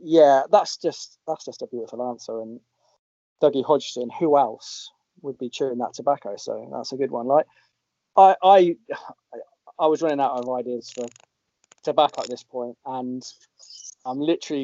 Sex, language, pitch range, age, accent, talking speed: male, English, 125-155 Hz, 20-39, British, 165 wpm